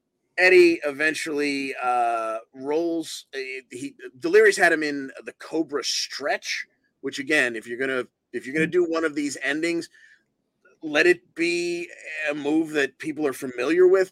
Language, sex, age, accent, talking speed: English, male, 30-49, American, 135 wpm